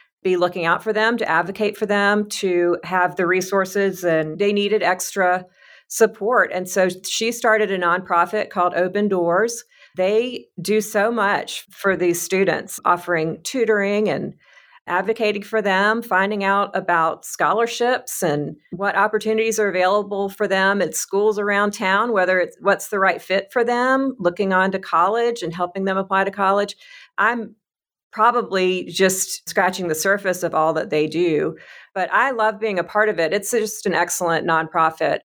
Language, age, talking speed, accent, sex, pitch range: English, 40-59, 165 wpm, American, female, 175-210 Hz